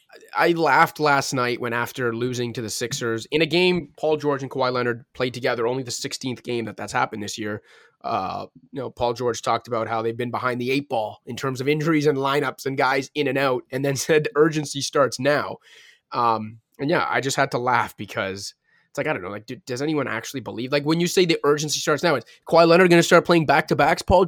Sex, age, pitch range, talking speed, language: male, 20-39, 135-165 Hz, 240 wpm, English